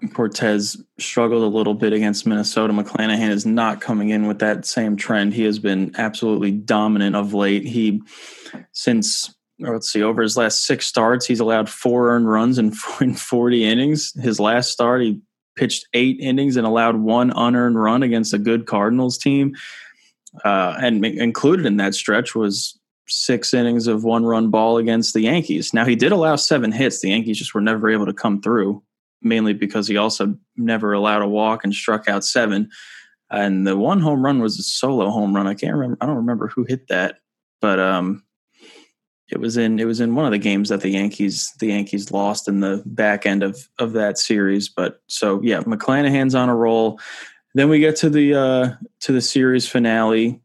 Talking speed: 190 wpm